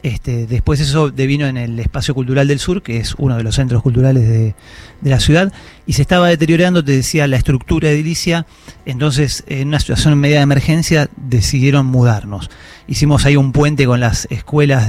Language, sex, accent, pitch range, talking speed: Spanish, male, Argentinian, 120-145 Hz, 190 wpm